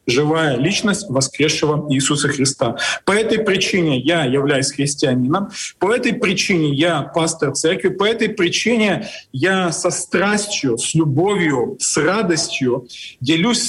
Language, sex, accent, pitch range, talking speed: Ukrainian, male, native, 150-200 Hz, 125 wpm